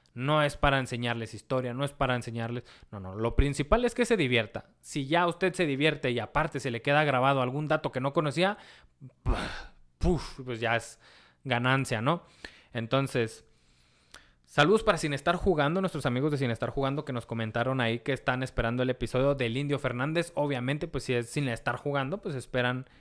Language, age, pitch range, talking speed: Spanish, 20-39, 120-150 Hz, 185 wpm